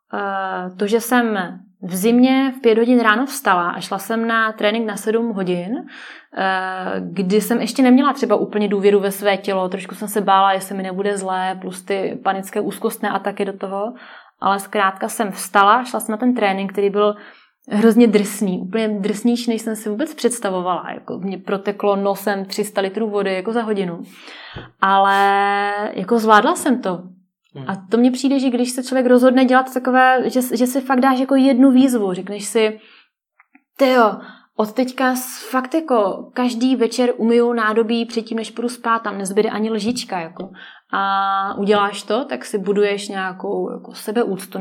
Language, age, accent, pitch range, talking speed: Czech, 20-39, native, 195-235 Hz, 170 wpm